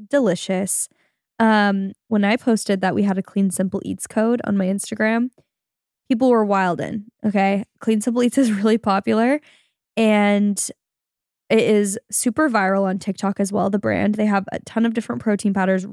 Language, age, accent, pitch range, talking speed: English, 10-29, American, 190-225 Hz, 175 wpm